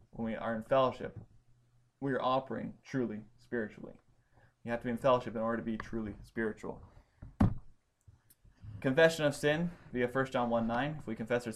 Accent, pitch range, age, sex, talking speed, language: American, 110-130 Hz, 20-39, male, 175 wpm, English